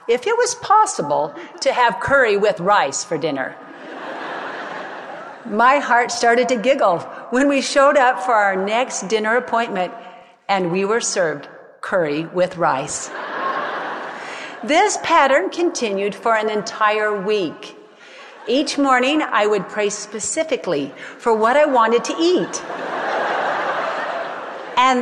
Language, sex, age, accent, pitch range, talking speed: English, female, 50-69, American, 185-250 Hz, 125 wpm